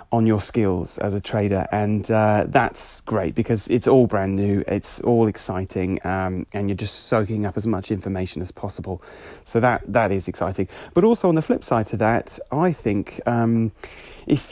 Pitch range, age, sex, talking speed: 105-135 Hz, 30-49, male, 205 wpm